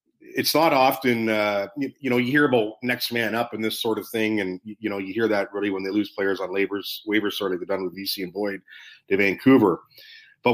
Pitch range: 100-120 Hz